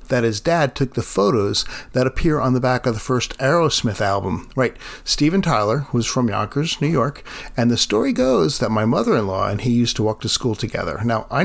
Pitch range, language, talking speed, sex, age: 110-140 Hz, English, 215 wpm, male, 50-69